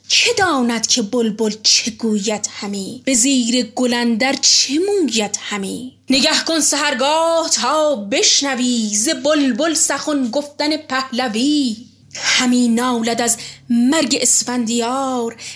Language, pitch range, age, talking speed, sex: Persian, 225-285 Hz, 20-39, 110 wpm, female